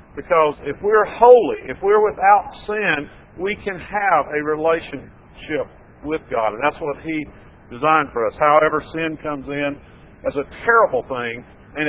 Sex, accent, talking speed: male, American, 155 wpm